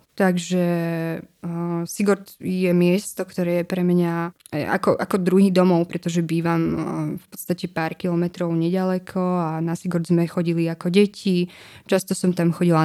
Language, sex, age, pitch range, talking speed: Slovak, female, 20-39, 165-185 Hz, 150 wpm